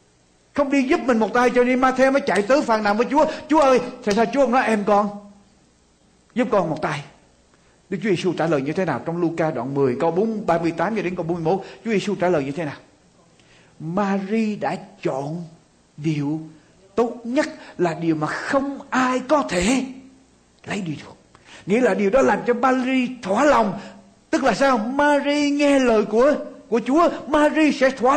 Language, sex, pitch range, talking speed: Vietnamese, male, 170-275 Hz, 190 wpm